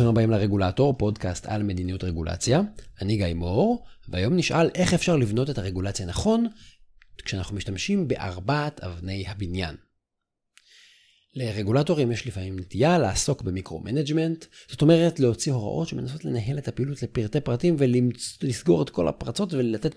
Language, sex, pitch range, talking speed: Hebrew, male, 95-150 Hz, 130 wpm